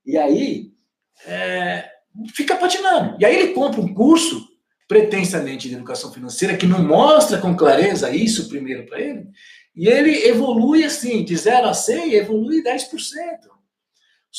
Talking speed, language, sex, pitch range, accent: 140 wpm, Portuguese, male, 175-290 Hz, Brazilian